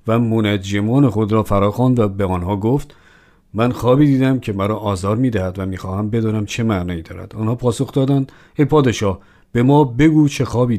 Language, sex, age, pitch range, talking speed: Persian, male, 50-69, 100-125 Hz, 190 wpm